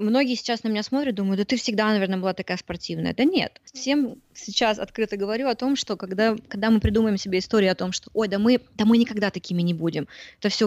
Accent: native